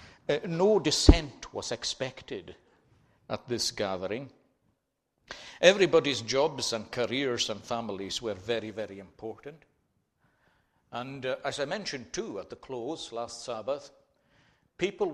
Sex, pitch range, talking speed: male, 110-150 Hz, 120 wpm